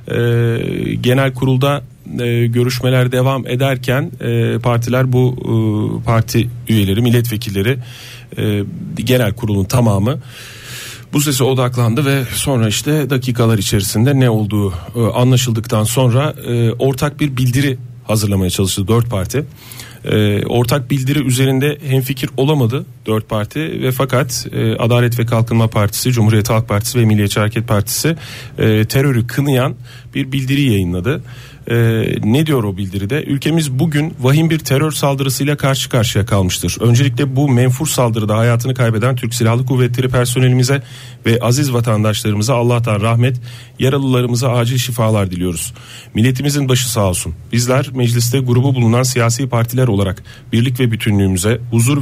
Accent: native